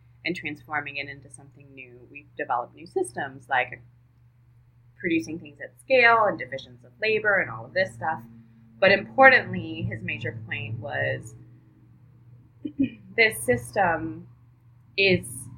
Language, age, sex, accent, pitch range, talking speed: English, 20-39, female, American, 120-165 Hz, 125 wpm